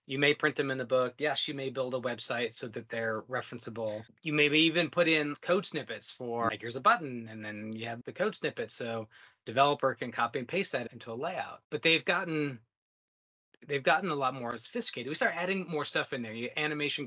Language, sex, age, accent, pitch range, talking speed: English, male, 30-49, American, 115-155 Hz, 225 wpm